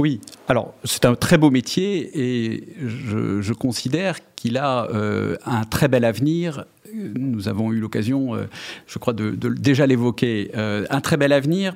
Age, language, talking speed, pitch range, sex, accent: 40-59, French, 180 wpm, 115-145 Hz, male, French